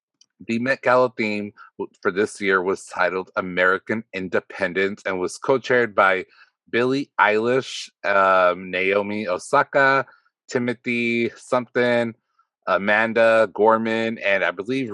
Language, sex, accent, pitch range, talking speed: English, male, American, 95-125 Hz, 110 wpm